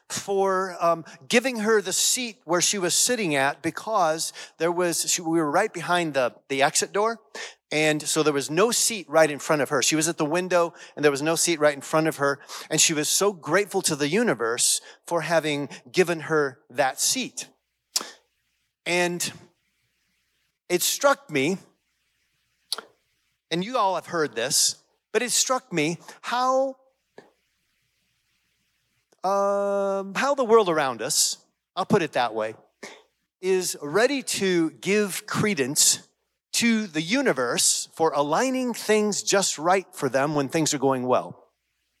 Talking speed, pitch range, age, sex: 155 wpm, 150-200 Hz, 40-59, male